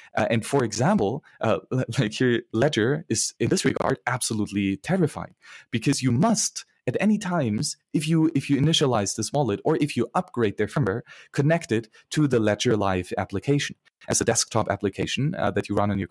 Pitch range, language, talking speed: 110-150 Hz, English, 185 wpm